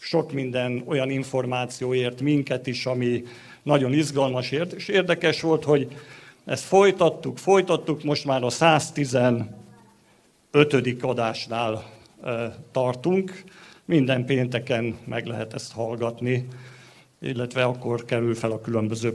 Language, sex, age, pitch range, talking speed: Hungarian, male, 50-69, 120-145 Hz, 105 wpm